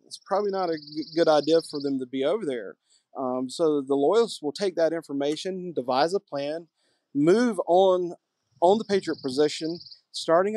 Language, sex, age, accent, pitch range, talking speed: English, male, 40-59, American, 140-185 Hz, 170 wpm